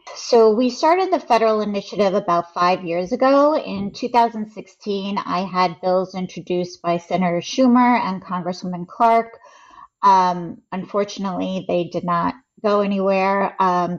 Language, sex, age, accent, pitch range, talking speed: English, female, 30-49, American, 180-220 Hz, 130 wpm